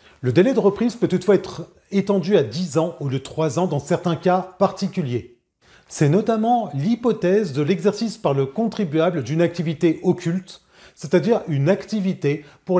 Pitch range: 150-195 Hz